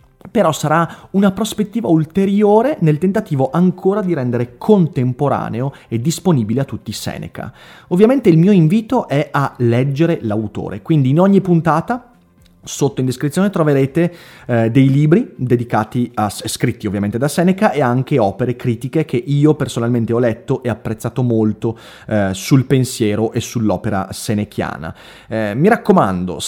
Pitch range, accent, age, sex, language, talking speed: 110-150 Hz, native, 30-49, male, Italian, 140 wpm